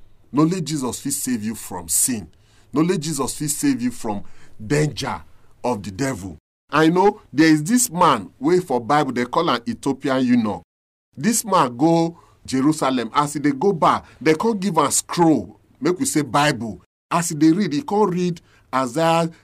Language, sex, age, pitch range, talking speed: English, male, 40-59, 120-180 Hz, 175 wpm